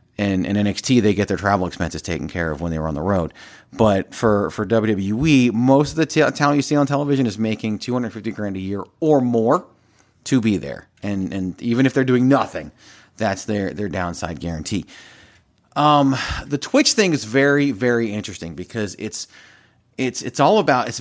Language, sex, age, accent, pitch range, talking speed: English, male, 30-49, American, 100-140 Hz, 205 wpm